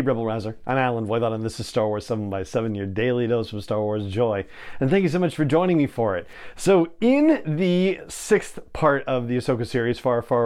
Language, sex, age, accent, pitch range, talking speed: English, male, 40-59, American, 115-145 Hz, 225 wpm